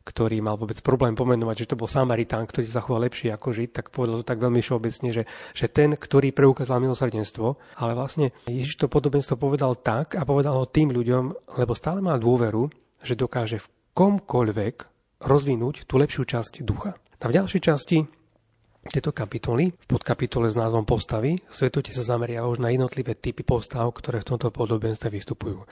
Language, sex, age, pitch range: Slovak, male, 30-49, 115-135 Hz